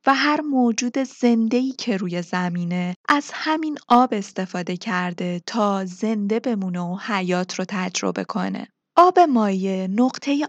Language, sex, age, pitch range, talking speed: Persian, female, 20-39, 190-275 Hz, 130 wpm